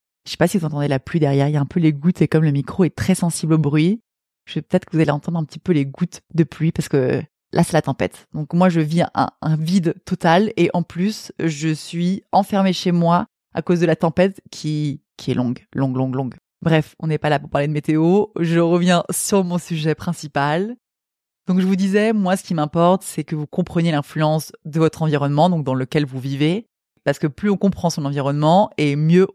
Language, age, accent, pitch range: French, 30-49, French, 150-175 Hz